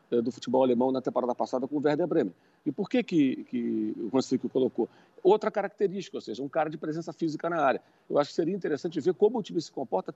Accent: Brazilian